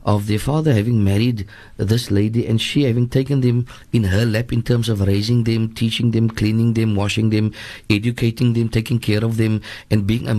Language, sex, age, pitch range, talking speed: English, male, 50-69, 110-130 Hz, 200 wpm